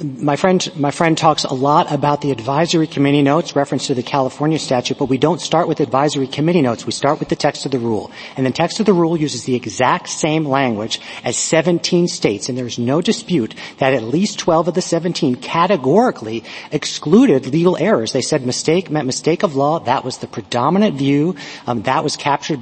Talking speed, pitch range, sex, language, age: 210 wpm, 135-175 Hz, male, English, 40-59